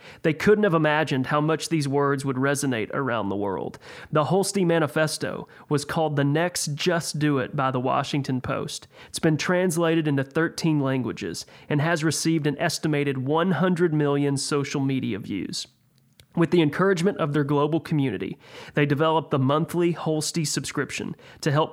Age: 30-49